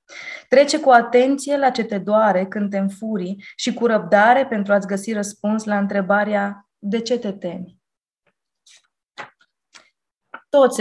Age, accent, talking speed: 20-39, native, 135 wpm